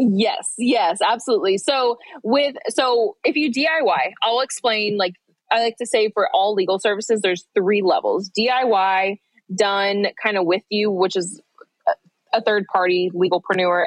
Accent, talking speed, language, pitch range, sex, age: American, 145 wpm, English, 180-225 Hz, female, 20-39